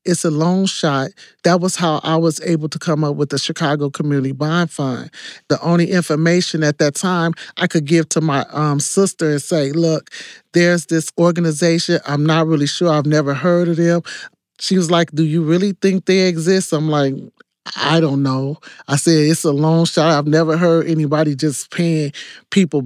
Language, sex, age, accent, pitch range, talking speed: English, male, 40-59, American, 145-165 Hz, 195 wpm